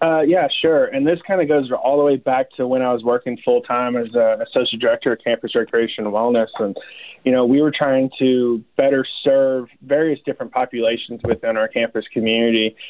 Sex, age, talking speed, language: male, 20-39, 210 wpm, English